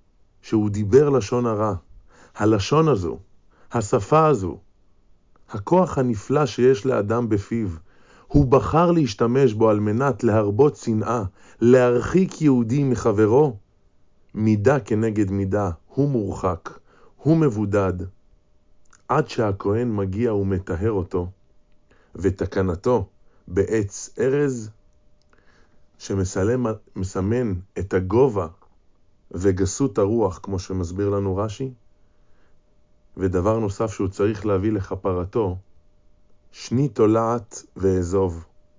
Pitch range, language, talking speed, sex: 95-120 Hz, Hebrew, 90 wpm, male